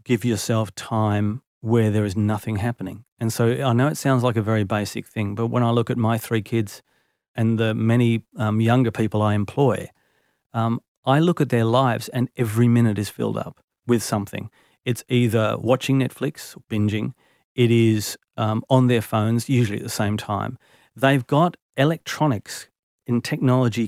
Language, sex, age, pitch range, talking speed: English, male, 40-59, 110-130 Hz, 180 wpm